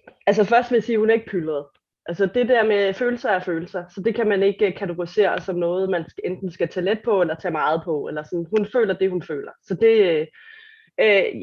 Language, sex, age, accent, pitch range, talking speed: Danish, female, 30-49, native, 180-225 Hz, 235 wpm